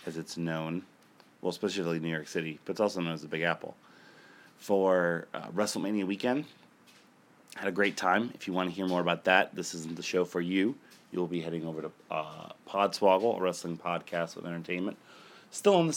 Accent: American